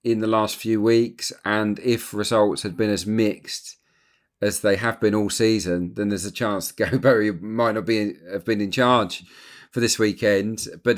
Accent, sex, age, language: British, male, 40-59, English